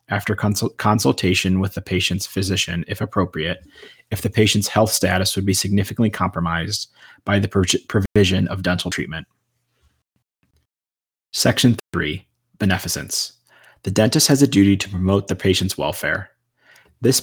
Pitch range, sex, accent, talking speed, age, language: 90-110 Hz, male, American, 135 wpm, 30-49, English